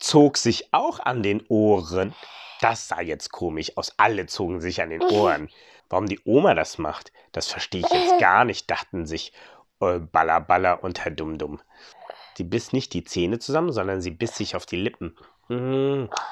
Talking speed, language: 180 wpm, German